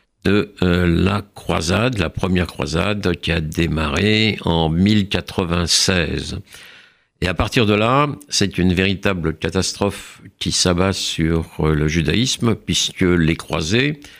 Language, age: French, 60-79